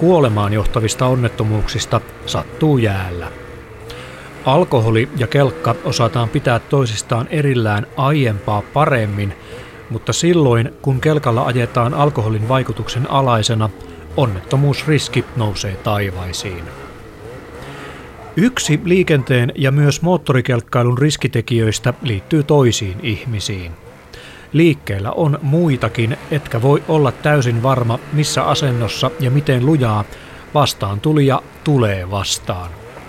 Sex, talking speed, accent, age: male, 90 wpm, native, 30-49